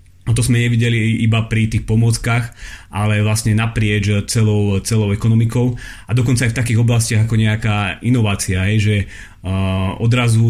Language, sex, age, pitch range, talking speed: Slovak, male, 30-49, 105-120 Hz, 150 wpm